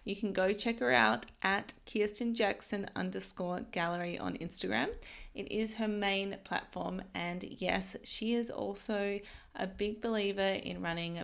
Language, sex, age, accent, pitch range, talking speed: English, female, 20-39, Australian, 190-240 Hz, 150 wpm